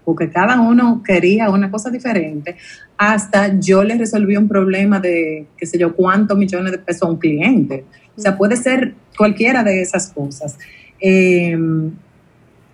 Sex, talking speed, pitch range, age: female, 155 wpm, 180-220 Hz, 30-49